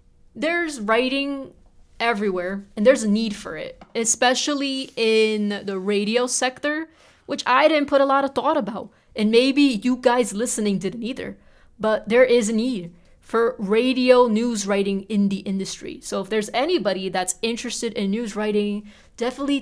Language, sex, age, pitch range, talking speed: English, female, 20-39, 205-245 Hz, 160 wpm